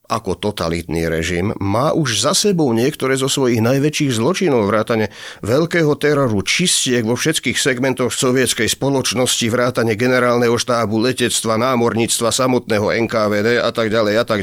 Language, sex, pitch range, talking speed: Slovak, male, 115-145 Hz, 135 wpm